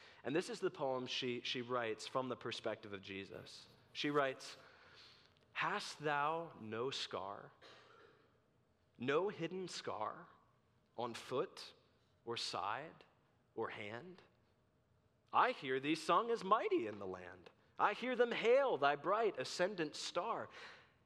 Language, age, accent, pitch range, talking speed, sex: English, 30-49, American, 110-155 Hz, 130 wpm, male